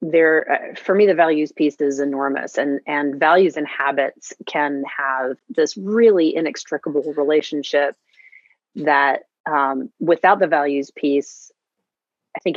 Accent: American